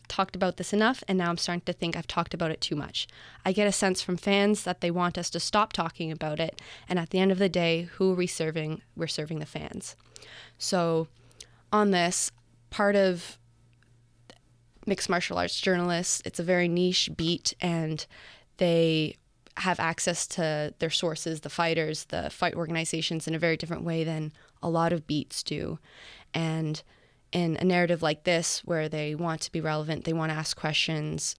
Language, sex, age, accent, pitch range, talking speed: English, female, 20-39, American, 155-180 Hz, 190 wpm